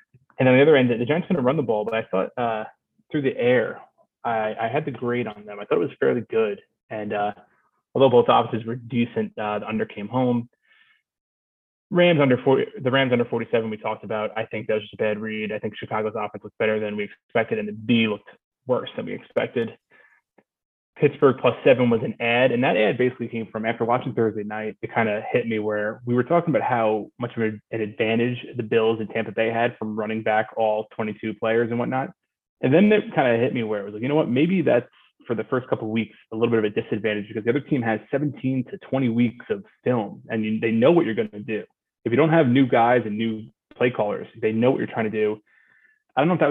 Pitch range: 110-130 Hz